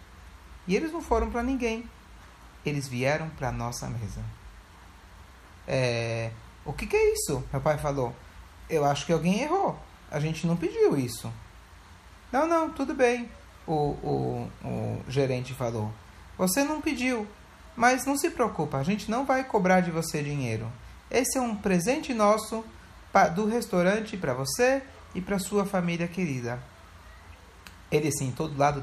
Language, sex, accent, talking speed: Portuguese, male, Brazilian, 155 wpm